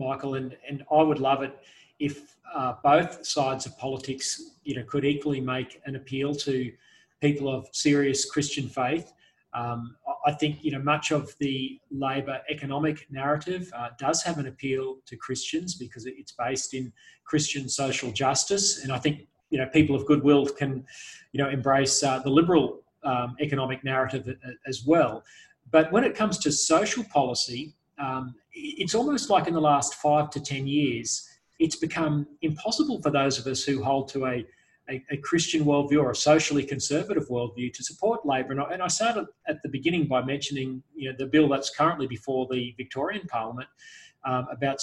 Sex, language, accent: male, English, Australian